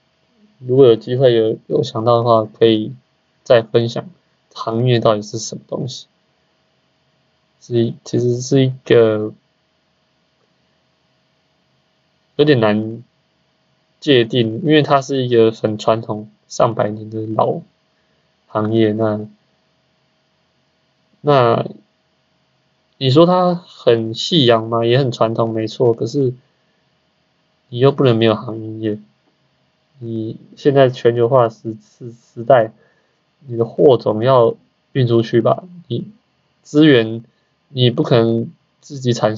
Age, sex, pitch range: 20-39, male, 110-130 Hz